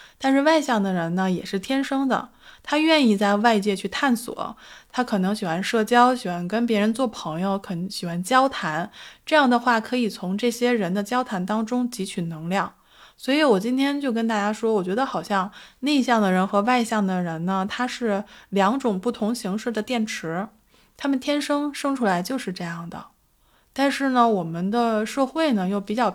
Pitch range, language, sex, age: 195-255 Hz, Chinese, female, 20-39